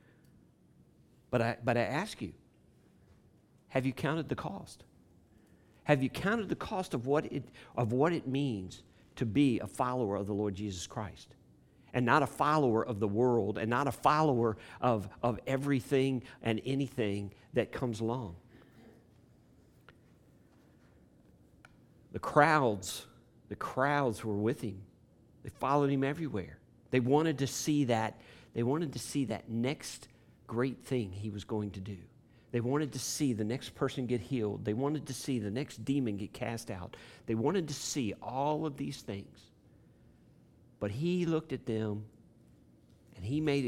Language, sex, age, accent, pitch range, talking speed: English, male, 50-69, American, 110-135 Hz, 160 wpm